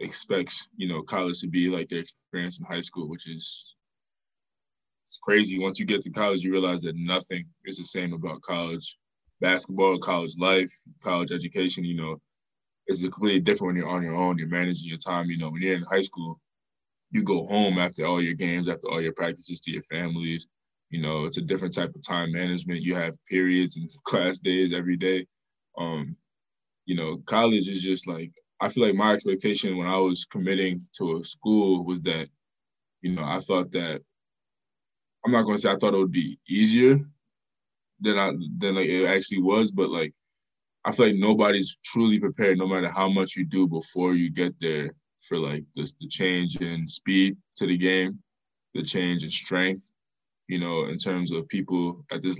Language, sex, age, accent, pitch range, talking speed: English, male, 20-39, American, 85-95 Hz, 195 wpm